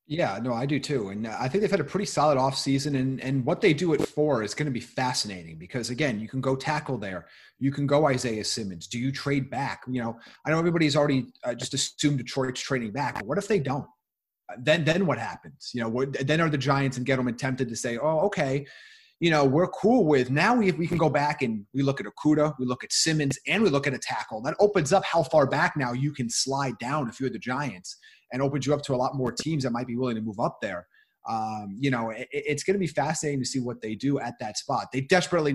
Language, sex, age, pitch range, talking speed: English, male, 30-49, 125-155 Hz, 260 wpm